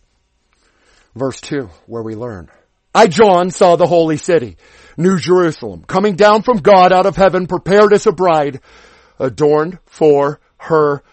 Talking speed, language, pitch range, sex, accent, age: 145 wpm, English, 160-230 Hz, male, American, 50-69